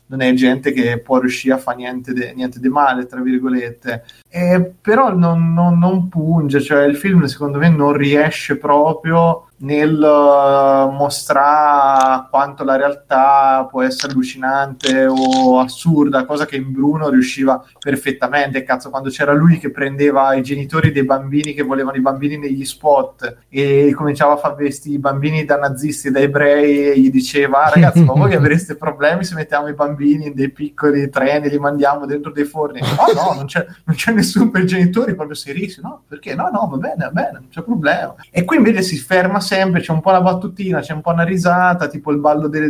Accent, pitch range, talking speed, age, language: native, 135-155 Hz, 195 wpm, 20-39, Italian